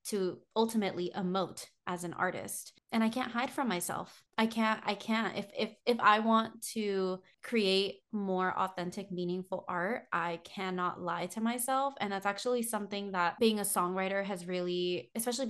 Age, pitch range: 20-39, 185-225 Hz